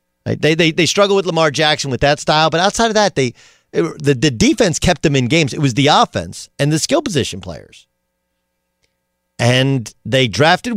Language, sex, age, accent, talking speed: English, male, 50-69, American, 200 wpm